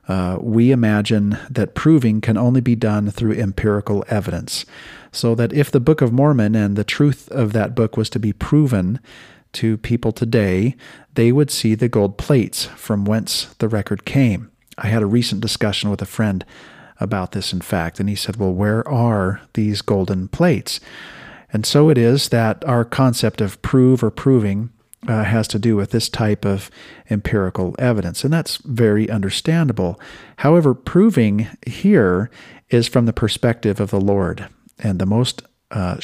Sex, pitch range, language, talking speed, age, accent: male, 100-125 Hz, English, 170 wpm, 40-59, American